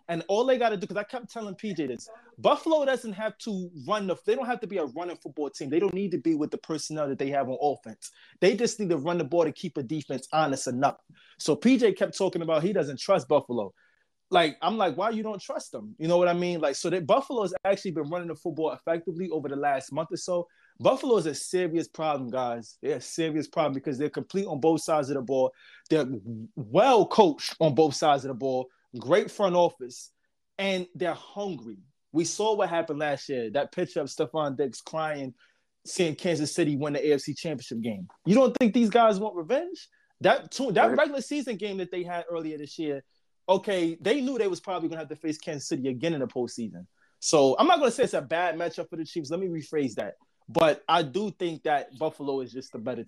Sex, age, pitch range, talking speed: male, 20-39, 145-190 Hz, 235 wpm